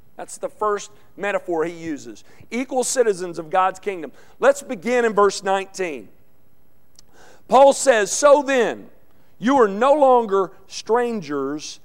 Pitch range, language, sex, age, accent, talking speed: 195-255 Hz, English, male, 50-69, American, 125 wpm